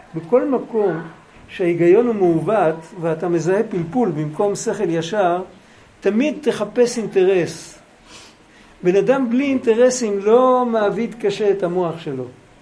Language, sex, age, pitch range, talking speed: Hebrew, male, 60-79, 185-245 Hz, 115 wpm